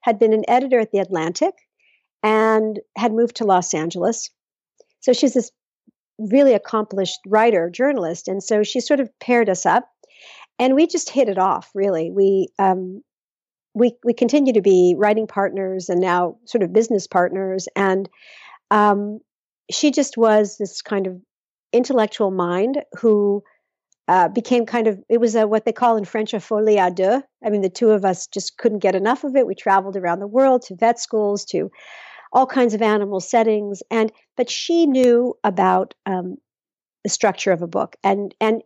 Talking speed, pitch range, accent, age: 180 wpm, 195-245 Hz, American, 50-69